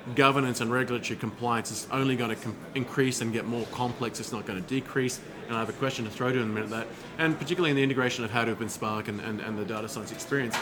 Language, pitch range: English, 120-140 Hz